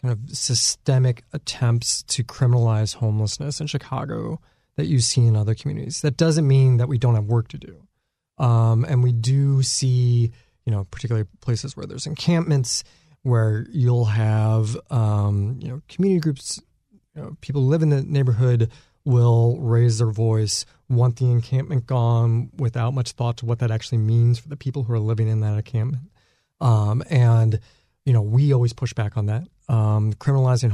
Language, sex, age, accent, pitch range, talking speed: English, male, 30-49, American, 115-140 Hz, 175 wpm